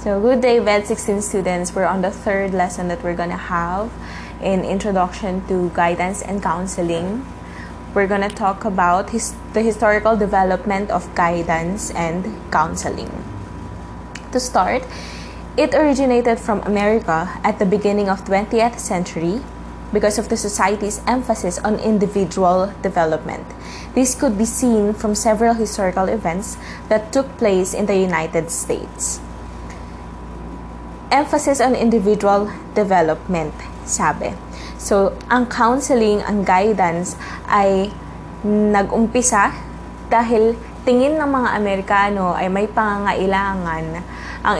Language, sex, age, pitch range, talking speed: Filipino, female, 10-29, 180-220 Hz, 120 wpm